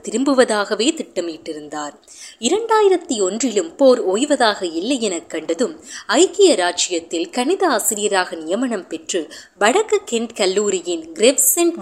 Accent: native